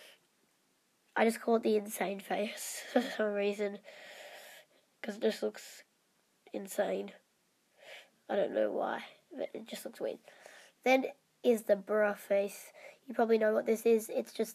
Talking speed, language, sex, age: 155 wpm, English, female, 10-29